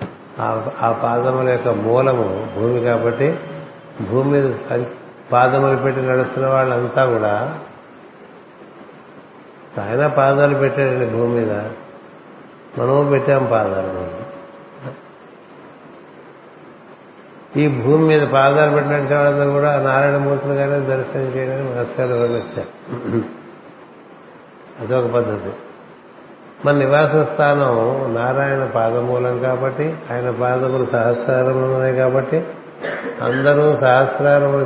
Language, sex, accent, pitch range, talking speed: Telugu, male, native, 120-140 Hz, 80 wpm